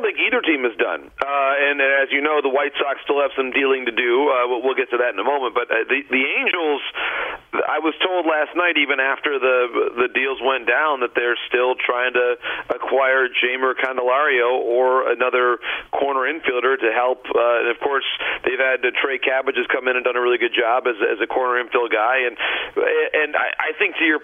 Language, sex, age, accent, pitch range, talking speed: English, male, 40-59, American, 125-165 Hz, 230 wpm